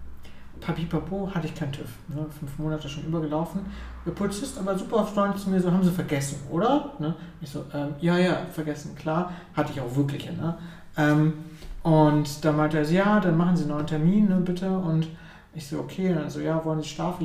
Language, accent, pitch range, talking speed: German, German, 150-180 Hz, 210 wpm